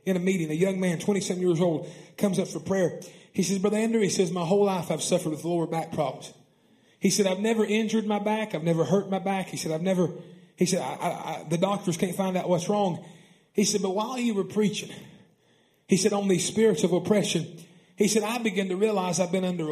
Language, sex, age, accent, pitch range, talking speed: English, male, 30-49, American, 160-200 Hz, 230 wpm